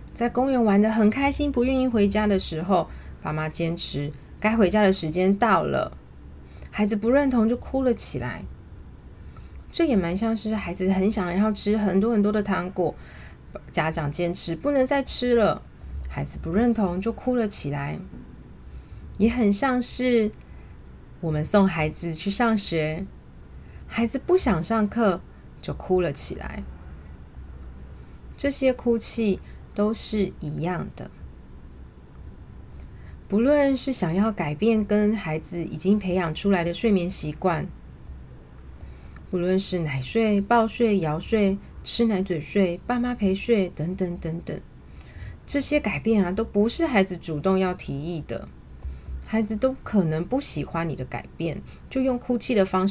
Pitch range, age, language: 150-225 Hz, 30-49, Chinese